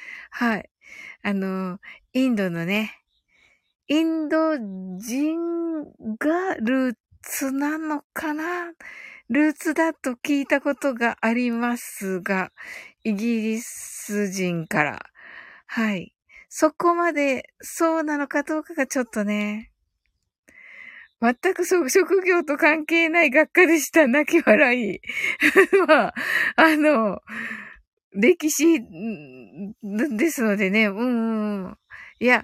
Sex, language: female, Japanese